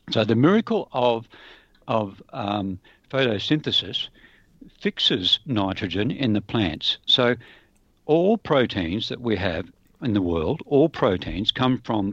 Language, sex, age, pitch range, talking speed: English, male, 60-79, 100-135 Hz, 125 wpm